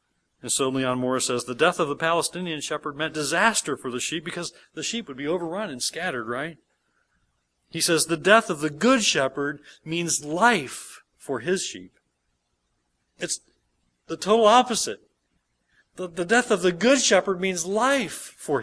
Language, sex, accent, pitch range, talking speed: English, male, American, 130-190 Hz, 170 wpm